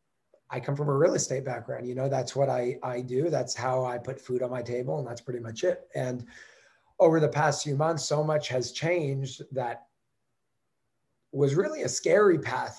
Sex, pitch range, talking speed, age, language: male, 125-145 Hz, 200 wpm, 30-49, English